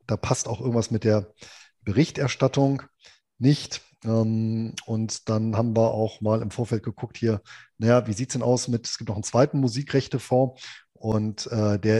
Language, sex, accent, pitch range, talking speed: German, male, German, 110-130 Hz, 165 wpm